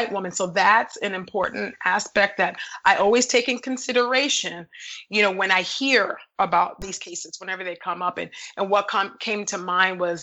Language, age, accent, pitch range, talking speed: English, 30-49, American, 180-225 Hz, 190 wpm